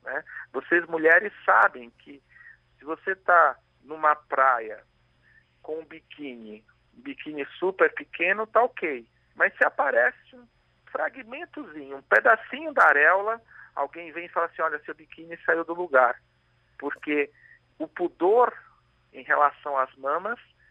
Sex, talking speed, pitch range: male, 135 wpm, 130-175 Hz